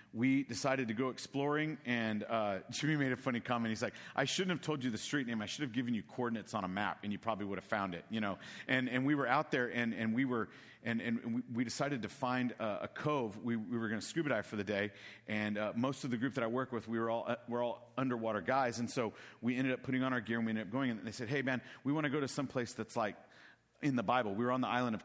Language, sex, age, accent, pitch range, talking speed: English, male, 40-59, American, 105-125 Hz, 295 wpm